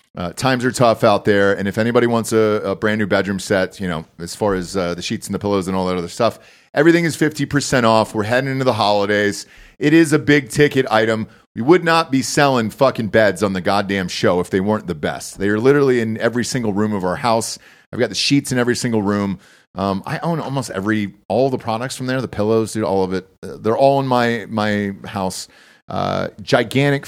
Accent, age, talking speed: American, 30-49, 235 wpm